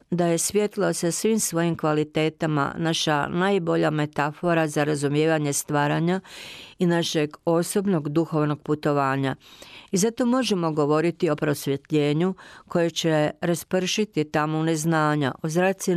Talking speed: 115 wpm